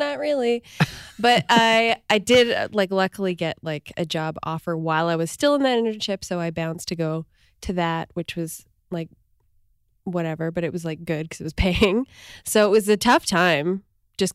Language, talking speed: English, 195 wpm